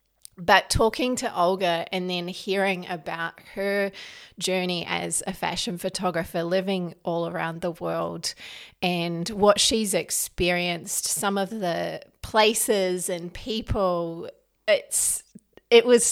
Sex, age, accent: female, 30-49, Australian